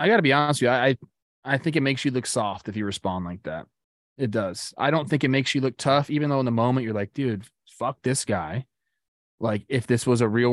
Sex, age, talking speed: male, 20-39, 260 wpm